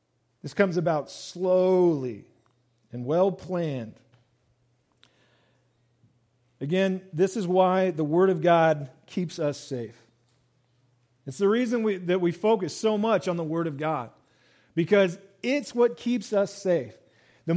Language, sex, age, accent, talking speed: English, male, 40-59, American, 125 wpm